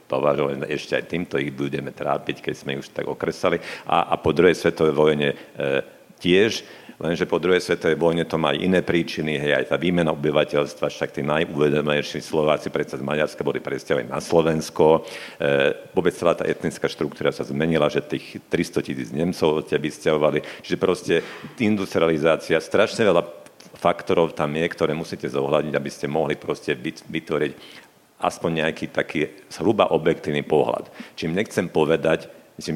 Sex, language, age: male, Slovak, 50-69